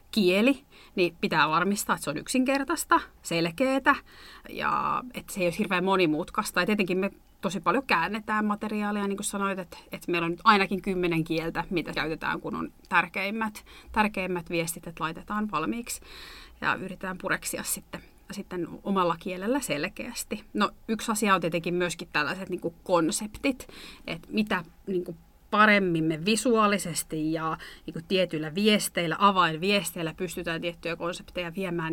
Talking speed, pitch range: 145 wpm, 170-210 Hz